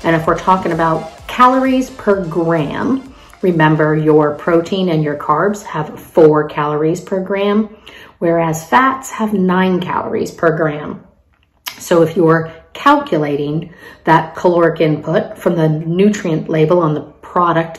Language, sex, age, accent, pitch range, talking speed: English, female, 40-59, American, 155-190 Hz, 140 wpm